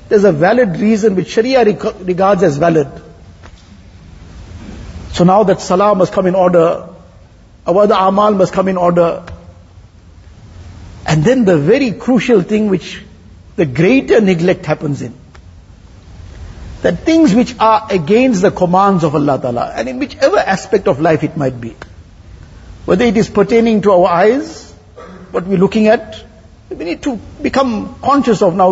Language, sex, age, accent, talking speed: English, male, 60-79, Indian, 150 wpm